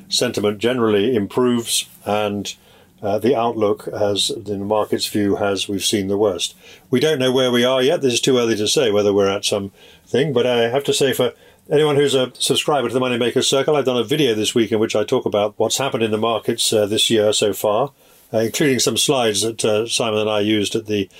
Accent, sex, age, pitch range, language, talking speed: British, male, 50-69, 105-135 Hz, English, 230 wpm